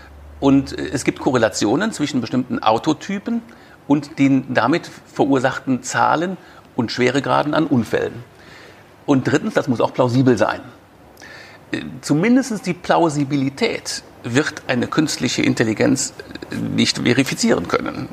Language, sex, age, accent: German, male, 60-79, German